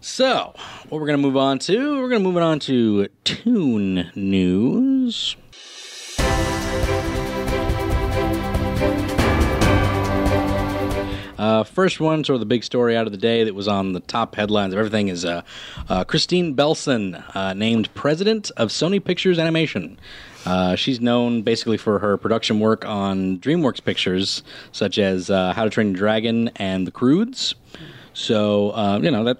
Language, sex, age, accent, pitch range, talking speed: English, male, 30-49, American, 100-130 Hz, 155 wpm